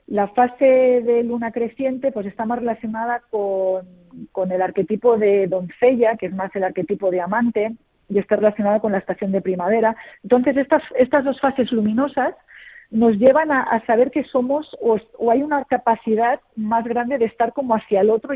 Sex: female